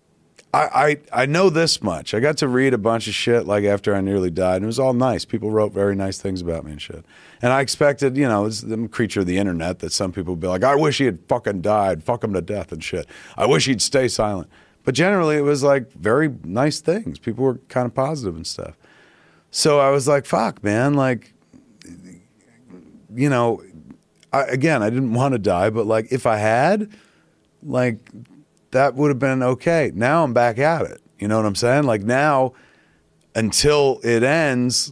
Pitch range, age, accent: 105-140 Hz, 40-59, American